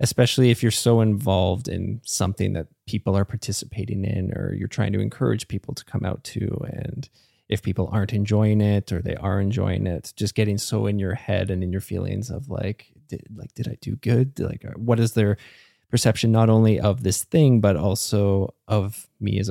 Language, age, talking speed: English, 20-39, 200 wpm